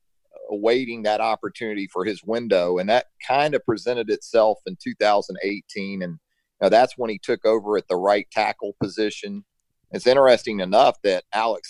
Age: 40-59